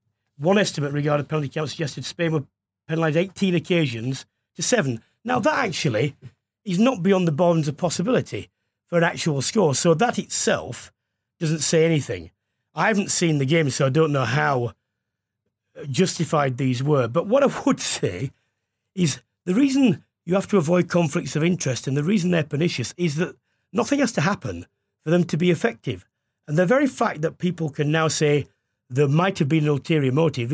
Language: English